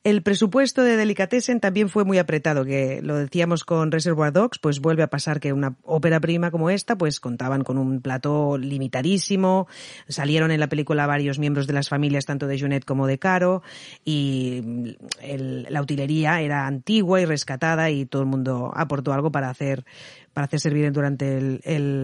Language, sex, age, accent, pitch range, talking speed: Spanish, female, 40-59, Spanish, 140-170 Hz, 180 wpm